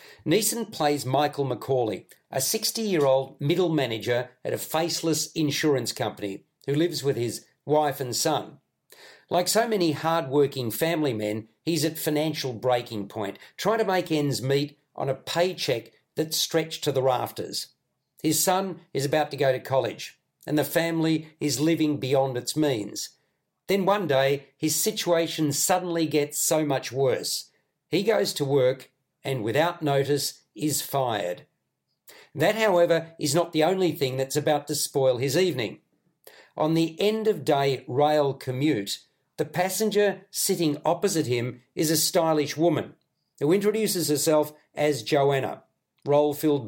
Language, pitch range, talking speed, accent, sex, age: English, 135-165 Hz, 145 wpm, Australian, male, 50-69